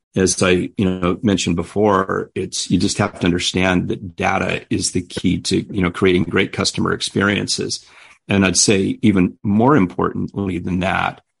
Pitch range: 90-100 Hz